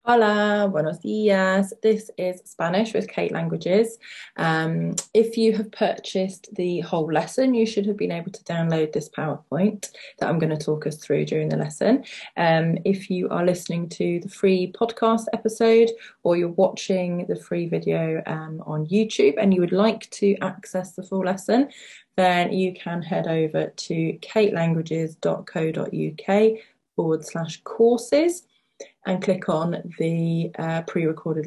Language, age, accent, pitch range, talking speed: English, 20-39, British, 160-205 Hz, 155 wpm